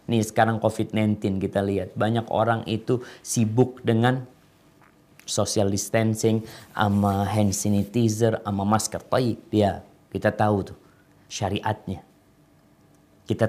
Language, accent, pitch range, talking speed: Indonesian, native, 100-150 Hz, 105 wpm